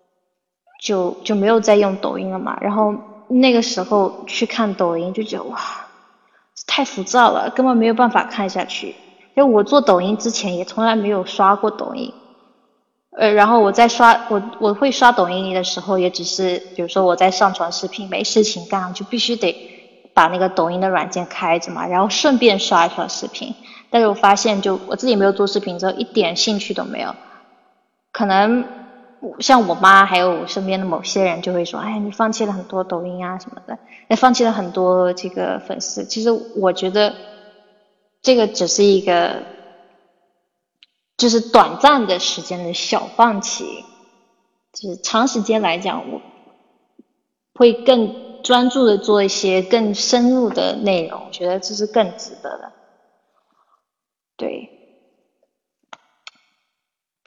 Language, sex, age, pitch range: Chinese, female, 20-39, 185-235 Hz